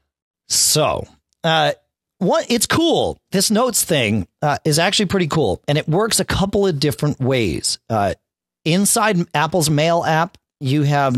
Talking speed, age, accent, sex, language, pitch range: 150 wpm, 40-59, American, male, English, 110-160 Hz